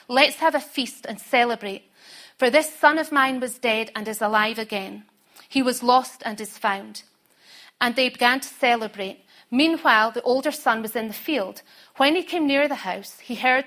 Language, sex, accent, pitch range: English, female, British, 220-275 Hz